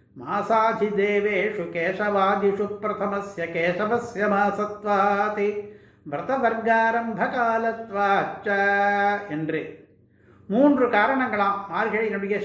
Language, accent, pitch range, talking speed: Tamil, native, 195-230 Hz, 65 wpm